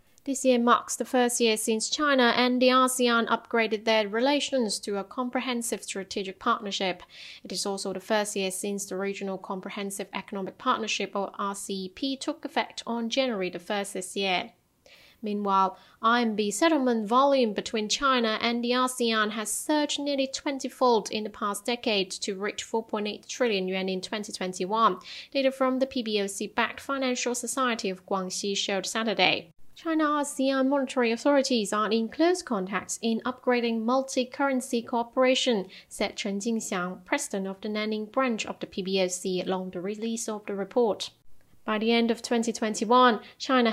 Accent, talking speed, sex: British, 150 wpm, female